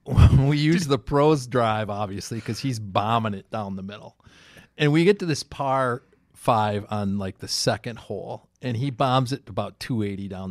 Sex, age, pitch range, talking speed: male, 40-59, 100-130 Hz, 185 wpm